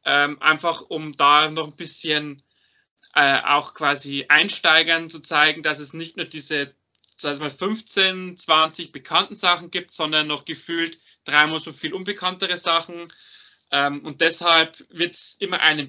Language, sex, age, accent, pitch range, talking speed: German, male, 30-49, German, 150-185 Hz, 145 wpm